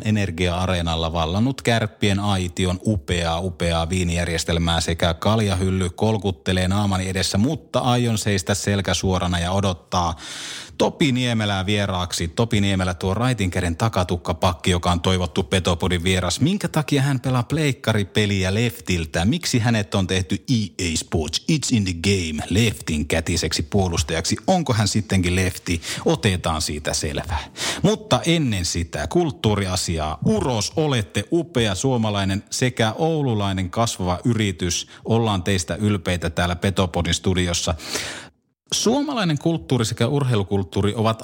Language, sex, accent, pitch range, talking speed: Finnish, male, native, 90-120 Hz, 120 wpm